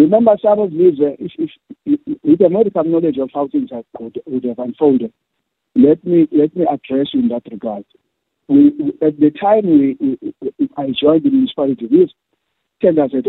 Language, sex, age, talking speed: English, male, 50-69, 200 wpm